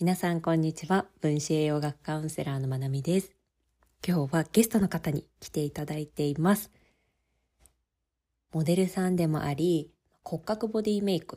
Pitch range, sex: 135-185 Hz, female